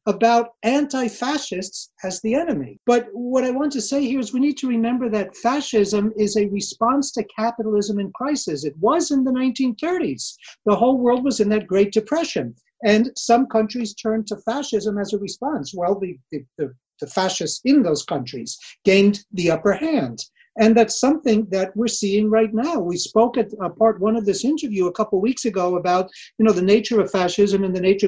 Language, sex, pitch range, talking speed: English, male, 195-235 Hz, 195 wpm